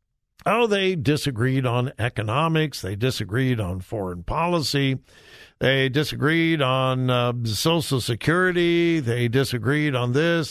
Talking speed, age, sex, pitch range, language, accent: 115 wpm, 60-79, male, 125-185 Hz, English, American